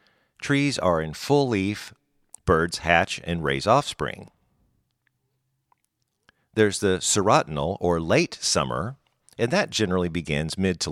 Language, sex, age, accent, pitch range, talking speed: English, male, 50-69, American, 80-115 Hz, 115 wpm